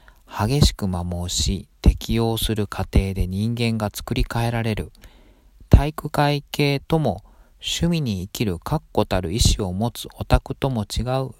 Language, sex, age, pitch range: Japanese, male, 40-59, 90-125 Hz